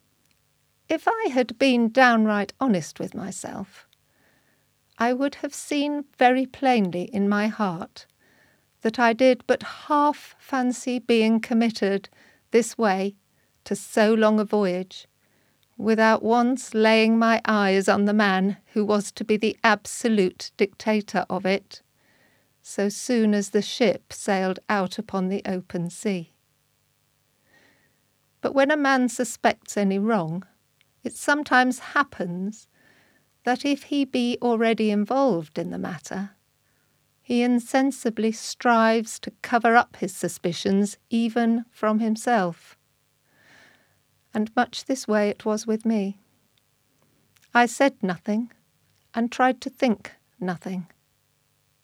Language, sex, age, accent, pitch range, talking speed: English, female, 50-69, British, 190-245 Hz, 125 wpm